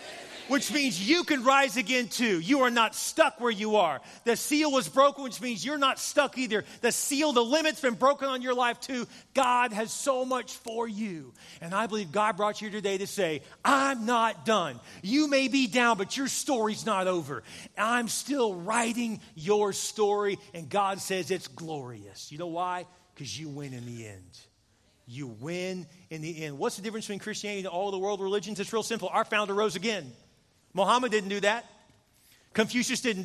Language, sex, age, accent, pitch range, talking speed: English, male, 30-49, American, 175-245 Hz, 195 wpm